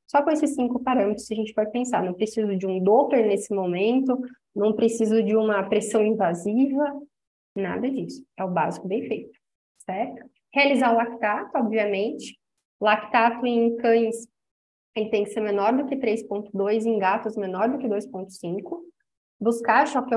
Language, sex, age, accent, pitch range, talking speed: Portuguese, female, 20-39, Brazilian, 205-245 Hz, 155 wpm